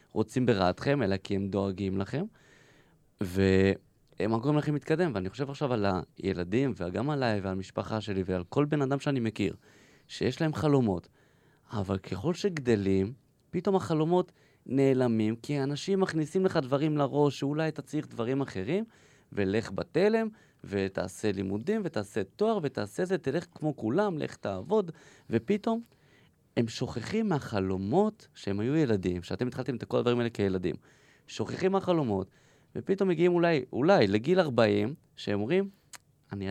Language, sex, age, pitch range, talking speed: Hebrew, male, 20-39, 105-160 Hz, 140 wpm